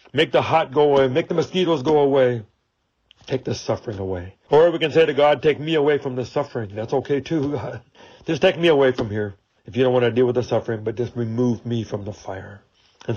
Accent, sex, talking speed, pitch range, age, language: American, male, 235 wpm, 105-135 Hz, 60-79, English